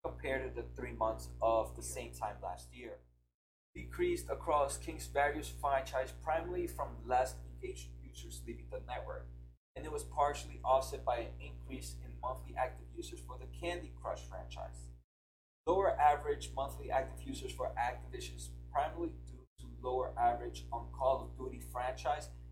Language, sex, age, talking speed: English, male, 30-49, 155 wpm